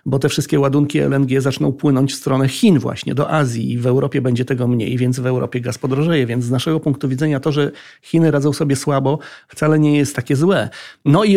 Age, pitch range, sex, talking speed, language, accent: 40-59, 130-150 Hz, male, 220 wpm, Polish, native